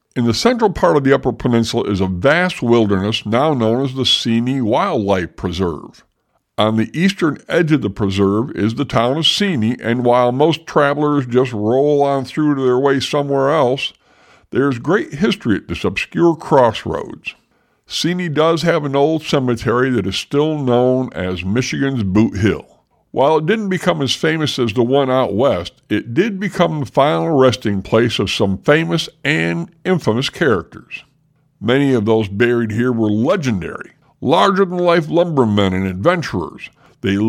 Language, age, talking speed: English, 60-79, 165 wpm